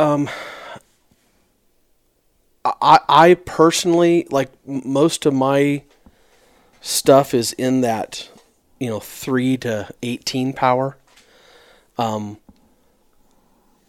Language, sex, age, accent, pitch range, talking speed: English, male, 30-49, American, 125-140 Hz, 80 wpm